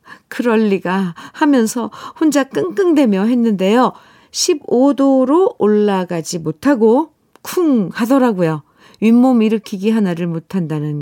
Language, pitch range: Korean, 190-265 Hz